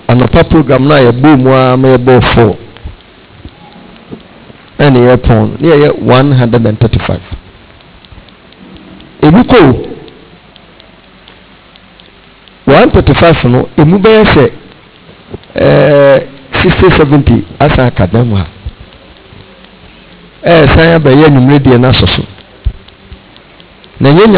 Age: 50-69